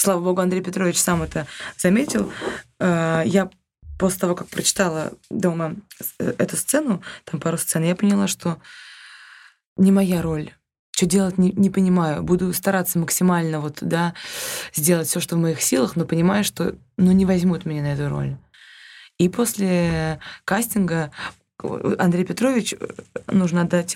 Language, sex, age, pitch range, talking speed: Russian, female, 20-39, 160-195 Hz, 140 wpm